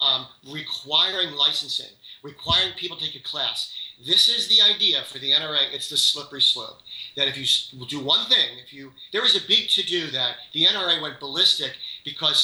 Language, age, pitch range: English, 40-59, 140-175 Hz